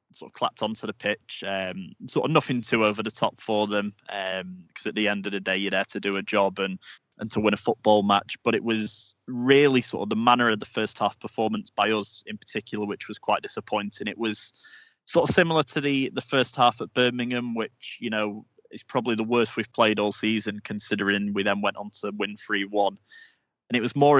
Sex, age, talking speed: male, 20-39, 235 wpm